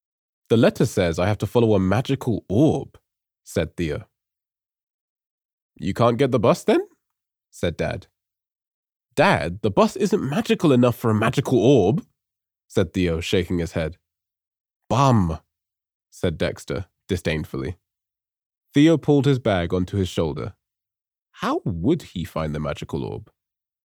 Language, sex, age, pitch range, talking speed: English, male, 20-39, 90-125 Hz, 135 wpm